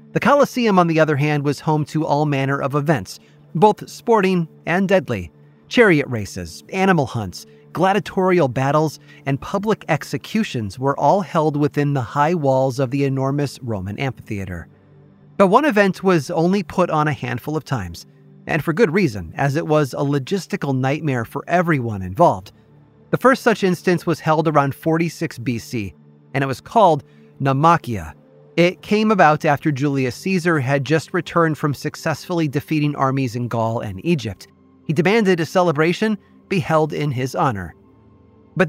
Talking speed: 160 wpm